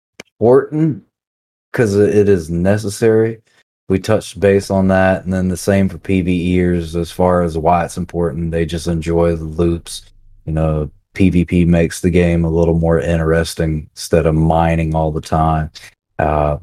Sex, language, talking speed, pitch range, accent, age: male, English, 160 wpm, 85-100 Hz, American, 30-49